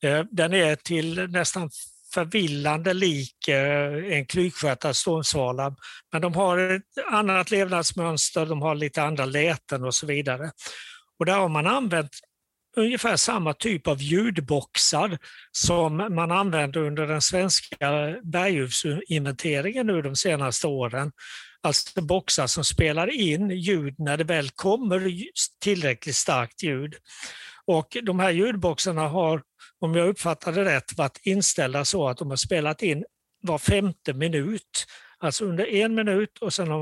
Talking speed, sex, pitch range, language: 140 wpm, male, 150-190 Hz, Swedish